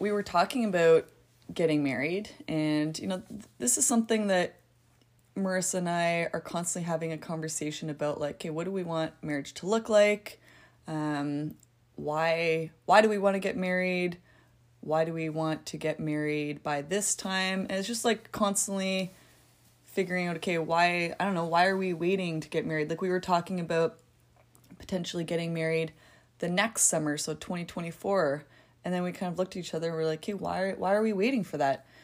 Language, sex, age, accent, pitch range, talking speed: English, female, 20-39, American, 155-190 Hz, 195 wpm